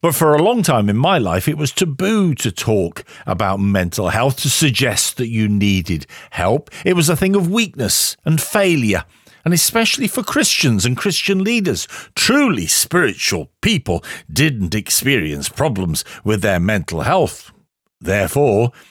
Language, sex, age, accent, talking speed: English, male, 50-69, British, 150 wpm